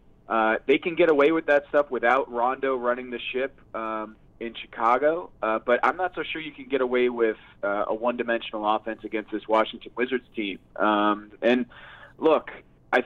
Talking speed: 185 wpm